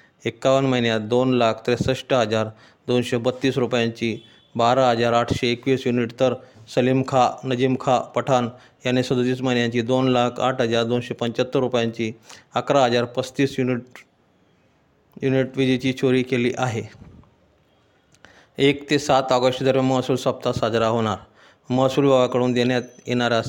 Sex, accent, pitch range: male, native, 115-130 Hz